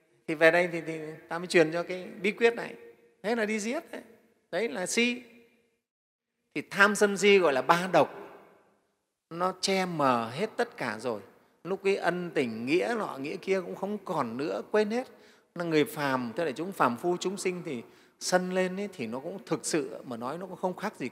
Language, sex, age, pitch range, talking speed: Vietnamese, male, 30-49, 155-210 Hz, 215 wpm